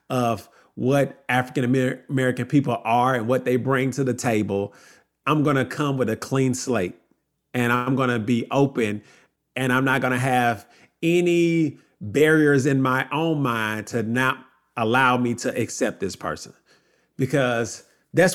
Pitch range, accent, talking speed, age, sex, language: 125-165 Hz, American, 155 wpm, 40-59, male, English